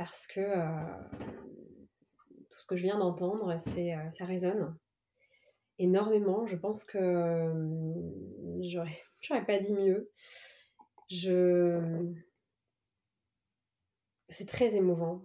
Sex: female